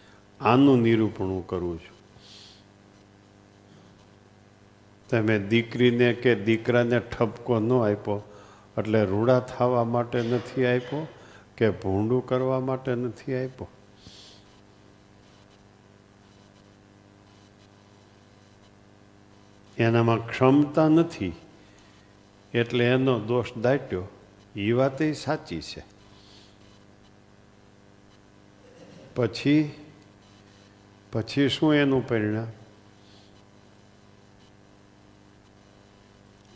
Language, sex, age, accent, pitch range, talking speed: Gujarati, male, 50-69, native, 100-120 Hz, 65 wpm